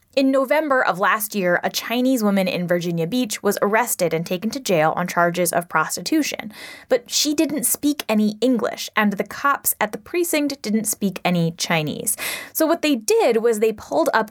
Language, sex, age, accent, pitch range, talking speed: English, female, 10-29, American, 195-300 Hz, 190 wpm